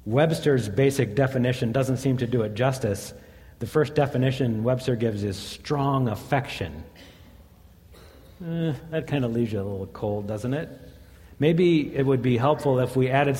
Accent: American